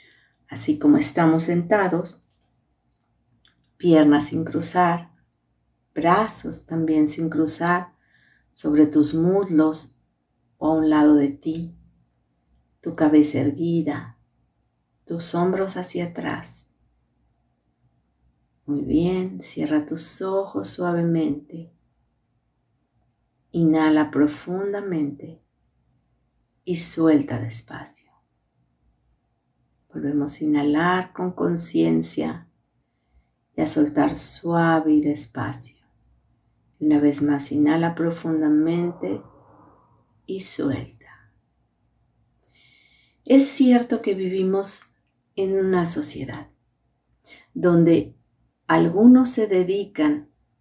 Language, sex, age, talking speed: Spanish, female, 40-59, 80 wpm